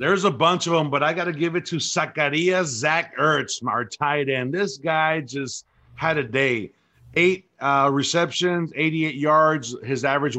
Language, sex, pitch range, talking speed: English, male, 125-155 Hz, 180 wpm